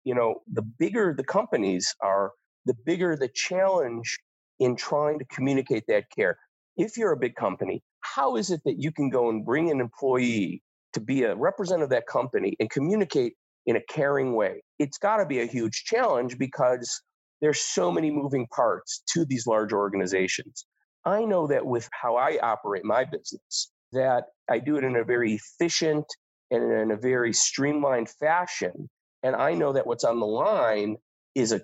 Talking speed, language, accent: 180 wpm, English, American